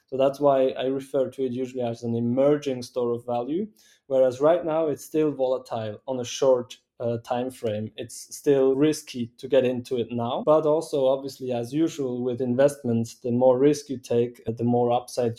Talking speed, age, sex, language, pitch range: 195 wpm, 20-39, male, English, 120-140 Hz